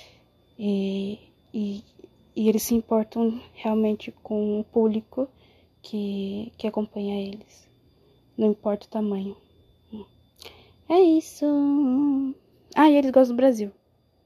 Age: 20-39